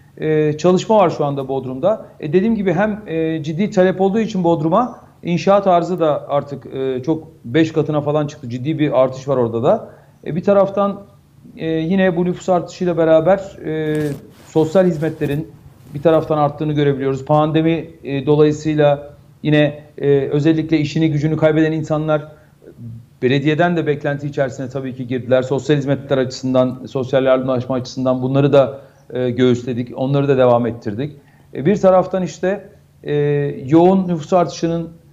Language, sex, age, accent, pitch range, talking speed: Turkish, male, 40-59, native, 140-170 Hz, 140 wpm